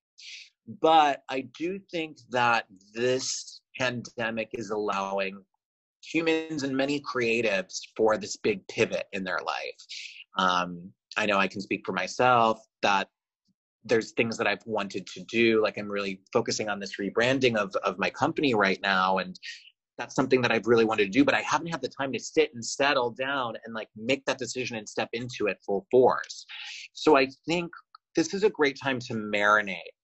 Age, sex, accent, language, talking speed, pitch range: 30-49, male, American, English, 180 wpm, 105-150 Hz